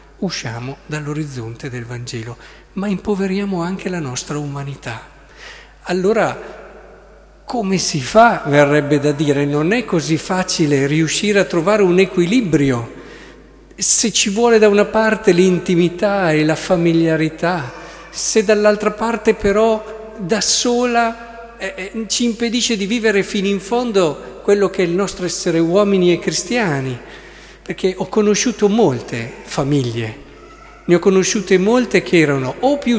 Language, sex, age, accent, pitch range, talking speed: Italian, male, 50-69, native, 155-215 Hz, 135 wpm